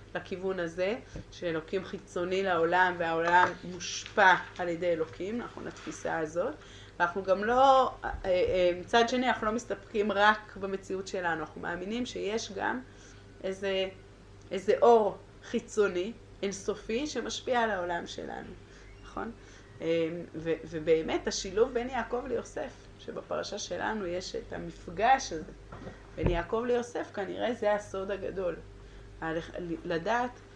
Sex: female